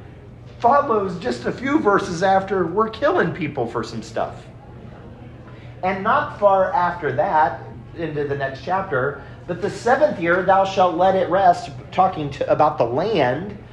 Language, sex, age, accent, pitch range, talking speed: English, male, 40-59, American, 125-185 Hz, 155 wpm